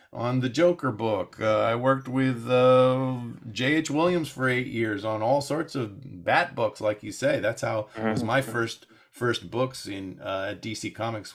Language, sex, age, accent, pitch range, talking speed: English, male, 40-59, American, 100-130 Hz, 180 wpm